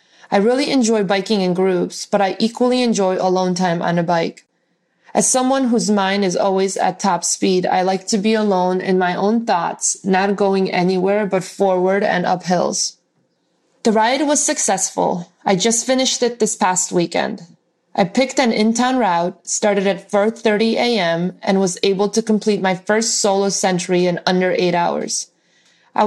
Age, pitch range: 20-39, 185-220 Hz